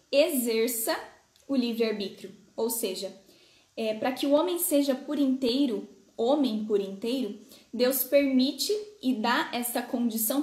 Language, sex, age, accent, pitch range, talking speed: Portuguese, female, 10-29, Brazilian, 225-280 Hz, 120 wpm